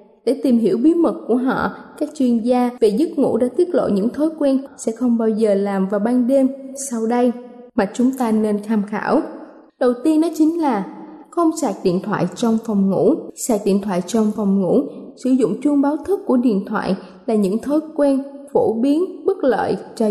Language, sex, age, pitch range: Thai, female, 20-39, 215-280 Hz